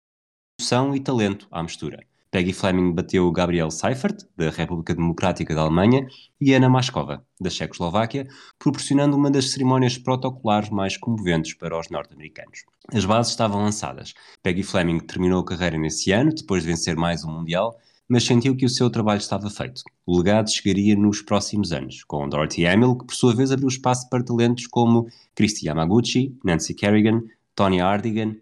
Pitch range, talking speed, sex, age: 90-125 Hz, 165 wpm, male, 20-39